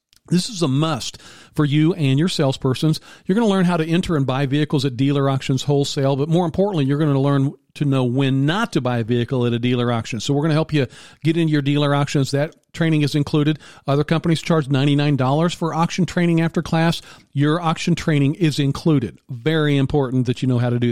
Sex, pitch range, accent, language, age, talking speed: male, 135-165 Hz, American, English, 40-59, 225 wpm